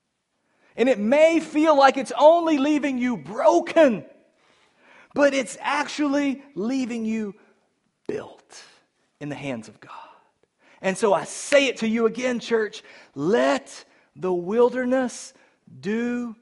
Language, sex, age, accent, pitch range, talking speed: English, male, 40-59, American, 145-230 Hz, 125 wpm